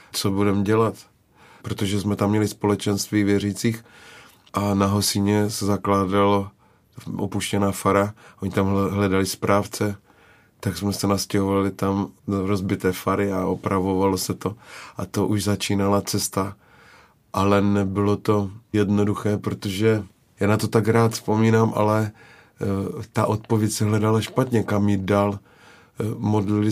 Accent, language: native, Czech